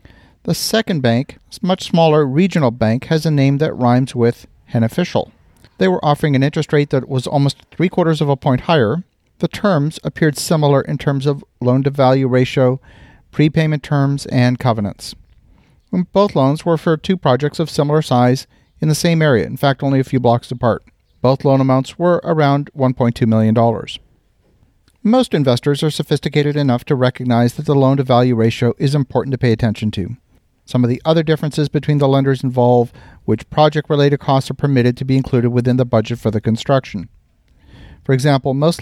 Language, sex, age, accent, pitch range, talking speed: English, male, 40-59, American, 120-155 Hz, 175 wpm